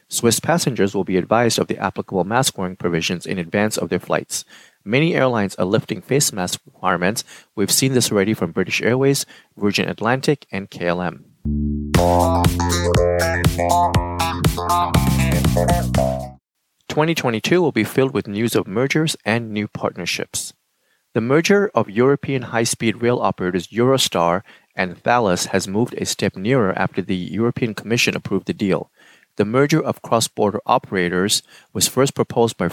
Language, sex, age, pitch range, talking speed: English, male, 30-49, 90-125 Hz, 140 wpm